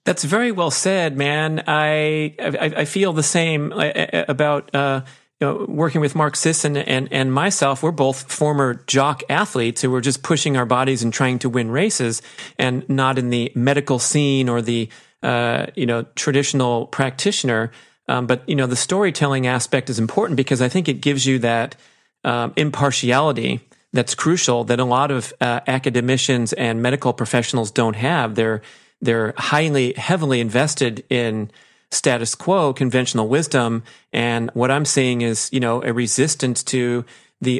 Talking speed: 165 wpm